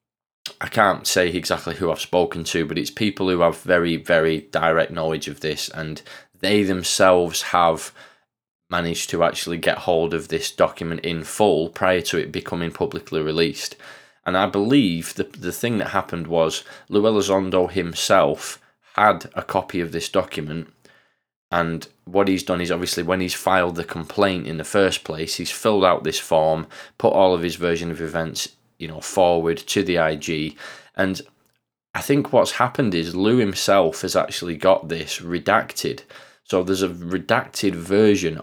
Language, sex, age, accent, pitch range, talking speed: English, male, 20-39, British, 80-95 Hz, 170 wpm